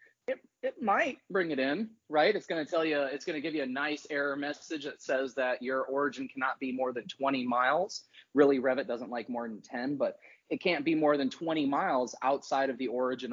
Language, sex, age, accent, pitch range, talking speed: English, male, 30-49, American, 130-180 Hz, 230 wpm